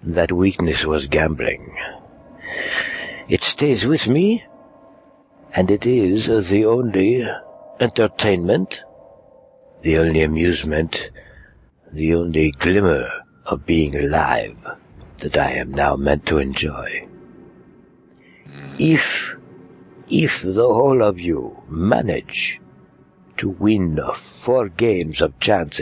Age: 60-79